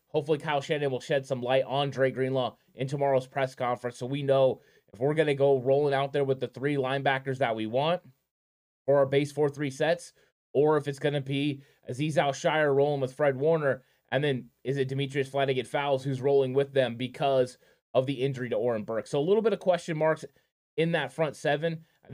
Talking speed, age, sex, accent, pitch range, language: 220 wpm, 20-39, male, American, 135-150 Hz, English